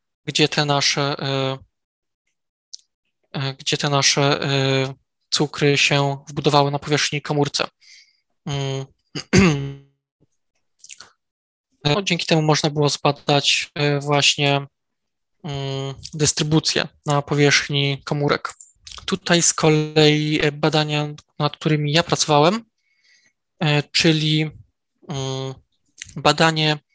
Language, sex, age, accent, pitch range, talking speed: Polish, male, 20-39, native, 145-160 Hz, 75 wpm